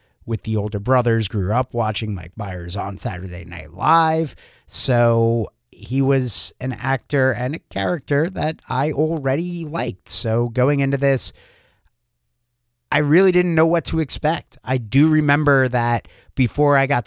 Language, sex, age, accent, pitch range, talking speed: English, male, 30-49, American, 110-135 Hz, 150 wpm